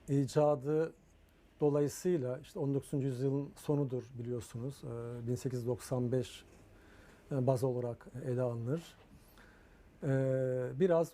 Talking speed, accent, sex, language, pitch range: 70 wpm, native, male, Turkish, 125-155 Hz